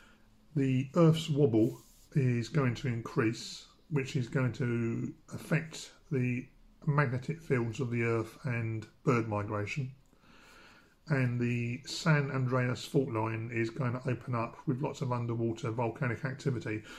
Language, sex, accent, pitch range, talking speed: English, male, British, 115-140 Hz, 135 wpm